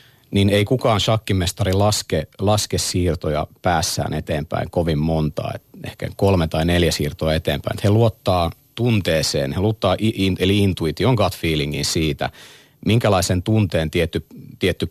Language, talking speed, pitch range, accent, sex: Finnish, 130 wpm, 80-105 Hz, native, male